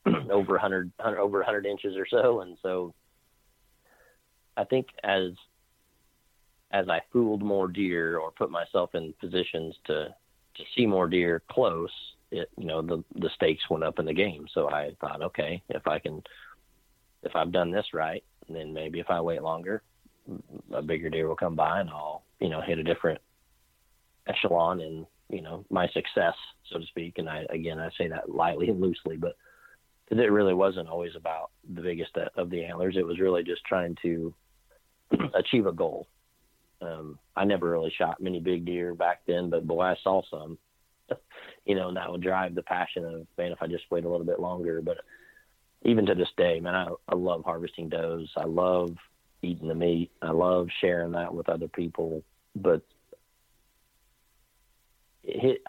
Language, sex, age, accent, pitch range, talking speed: English, male, 30-49, American, 85-95 Hz, 180 wpm